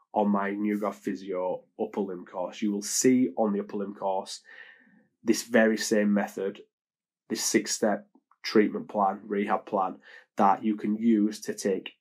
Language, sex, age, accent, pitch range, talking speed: English, male, 20-39, British, 95-110 Hz, 160 wpm